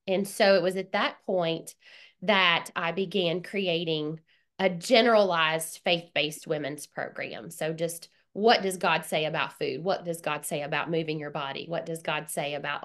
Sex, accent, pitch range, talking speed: female, American, 165-200 Hz, 175 wpm